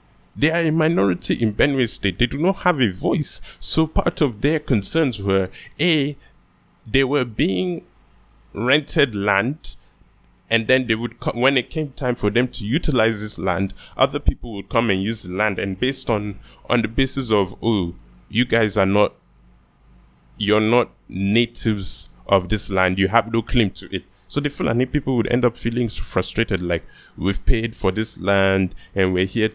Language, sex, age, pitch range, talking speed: English, male, 20-39, 95-130 Hz, 185 wpm